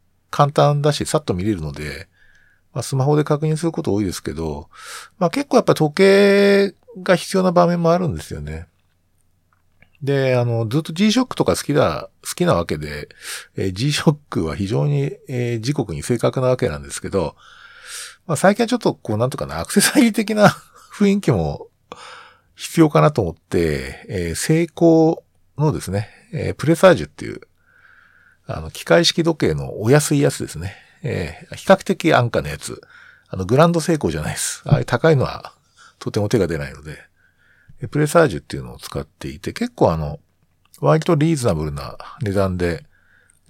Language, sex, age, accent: Japanese, male, 50-69, native